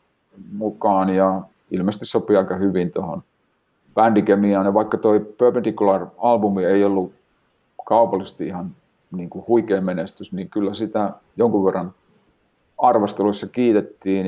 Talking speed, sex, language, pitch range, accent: 110 wpm, male, Finnish, 95-110 Hz, native